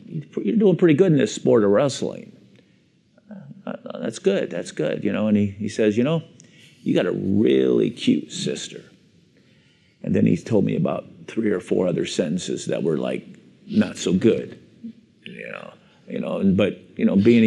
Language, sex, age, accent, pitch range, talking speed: English, male, 50-69, American, 105-125 Hz, 185 wpm